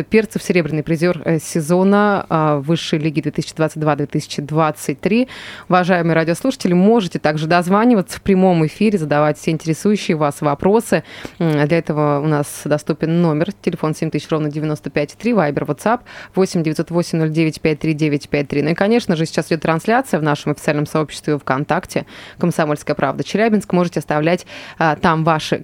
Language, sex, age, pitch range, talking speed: Russian, female, 20-39, 155-195 Hz, 130 wpm